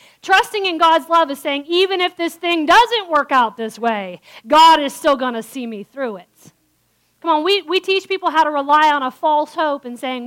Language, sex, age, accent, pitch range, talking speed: English, female, 40-59, American, 250-340 Hz, 220 wpm